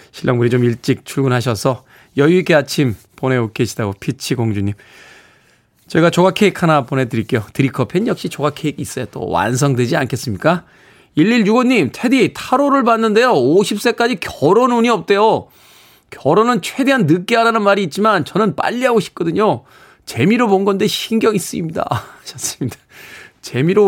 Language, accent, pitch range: Korean, native, 135-210 Hz